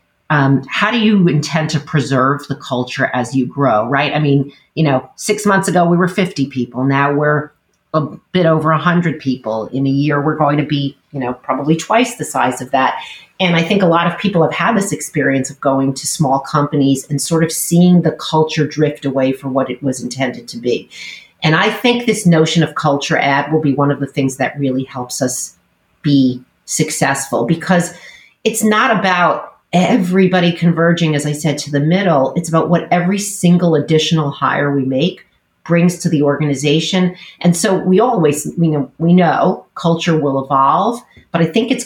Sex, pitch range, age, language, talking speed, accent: female, 140-175 Hz, 40-59, English, 195 wpm, American